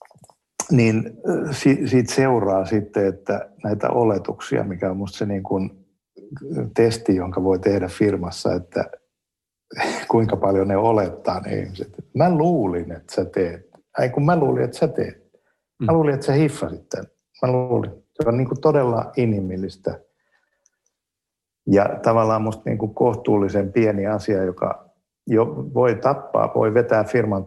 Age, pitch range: 60-79, 95-115 Hz